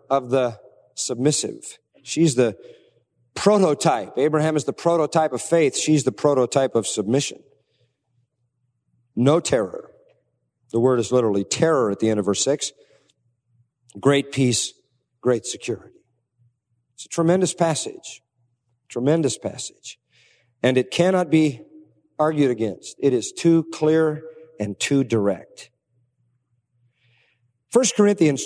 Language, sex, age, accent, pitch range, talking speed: English, male, 50-69, American, 120-155 Hz, 115 wpm